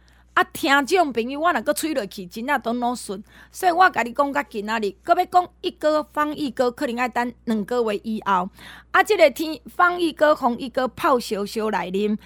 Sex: female